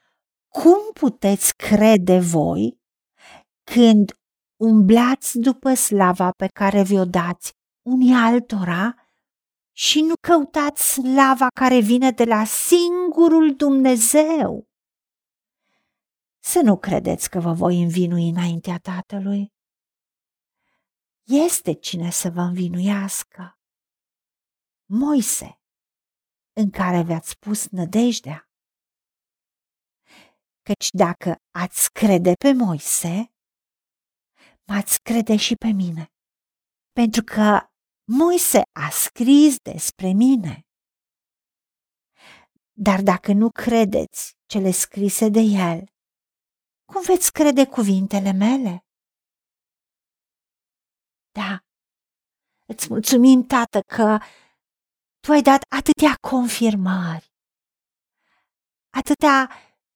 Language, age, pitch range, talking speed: Romanian, 50-69, 190-265 Hz, 85 wpm